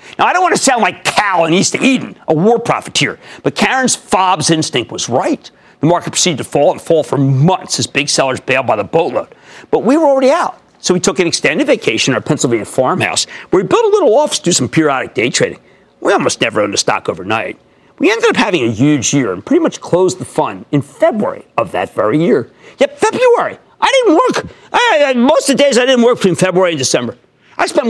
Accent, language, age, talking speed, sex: American, English, 50-69, 235 wpm, male